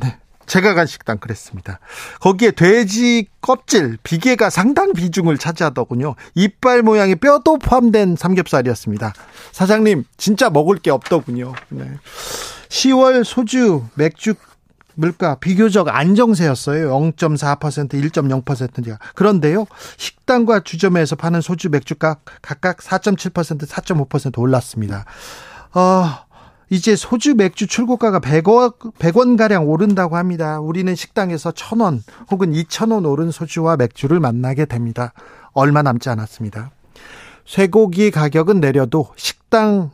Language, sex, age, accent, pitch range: Korean, male, 40-59, native, 140-205 Hz